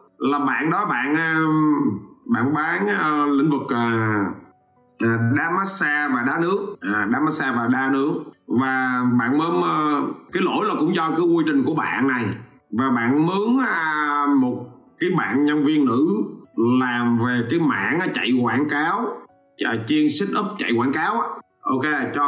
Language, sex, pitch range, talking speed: Vietnamese, male, 135-205 Hz, 155 wpm